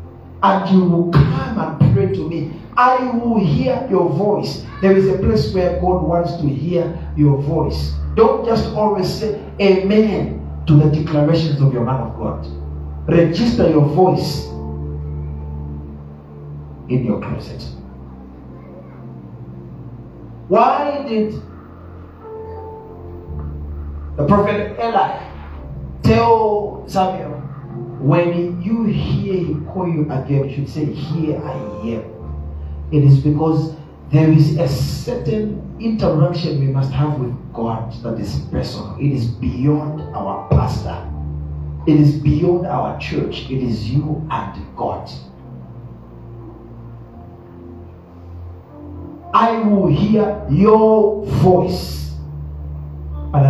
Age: 40-59